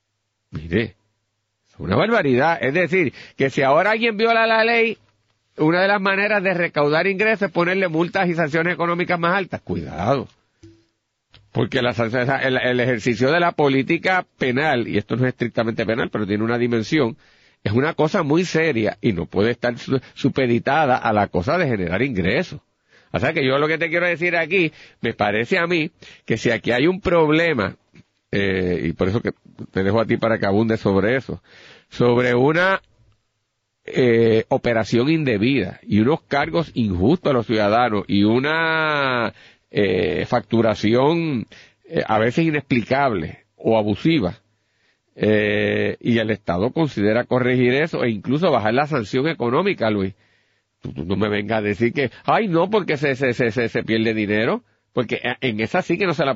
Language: Spanish